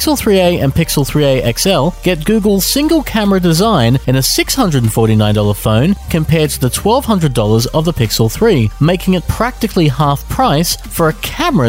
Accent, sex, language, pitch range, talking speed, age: Australian, male, English, 115-175 Hz, 160 wpm, 30-49